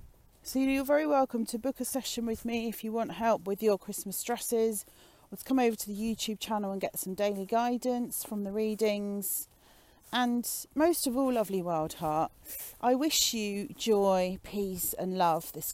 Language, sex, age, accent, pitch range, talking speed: English, female, 40-59, British, 185-245 Hz, 185 wpm